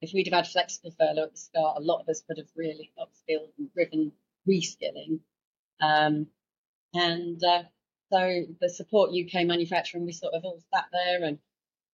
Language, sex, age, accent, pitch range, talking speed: English, female, 30-49, British, 165-200 Hz, 175 wpm